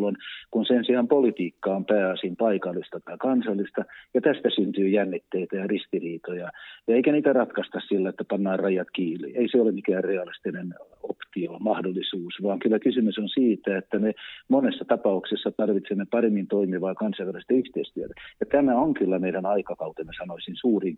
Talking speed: 150 wpm